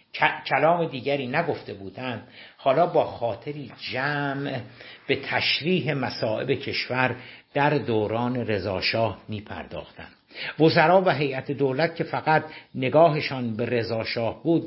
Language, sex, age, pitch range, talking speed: Persian, male, 60-79, 115-150 Hz, 105 wpm